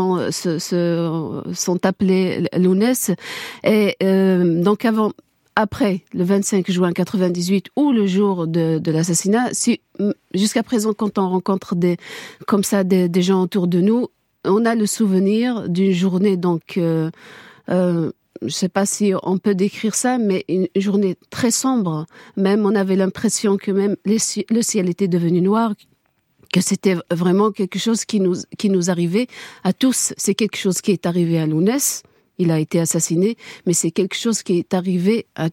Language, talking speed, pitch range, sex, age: French, 170 wpm, 175-210 Hz, female, 50-69